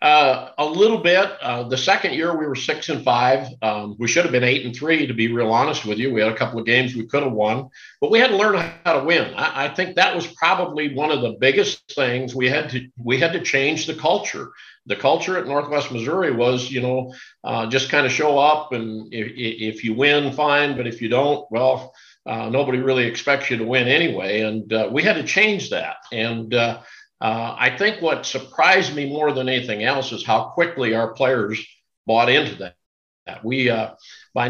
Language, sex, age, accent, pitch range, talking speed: English, male, 50-69, American, 115-145 Hz, 225 wpm